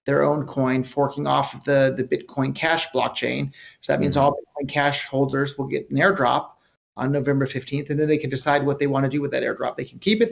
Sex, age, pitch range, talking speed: male, 30-49, 135-155 Hz, 240 wpm